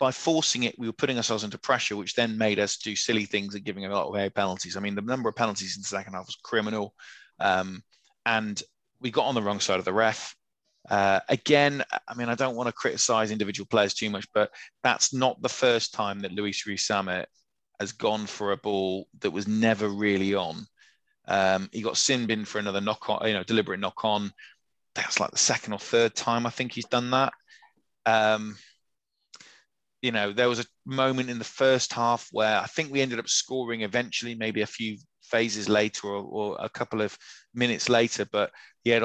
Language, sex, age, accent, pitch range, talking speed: English, male, 20-39, British, 100-120 Hz, 210 wpm